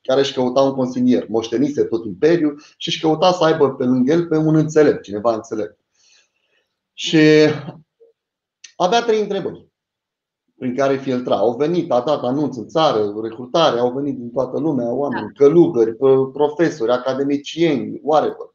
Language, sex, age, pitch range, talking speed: Romanian, male, 30-49, 125-180 Hz, 150 wpm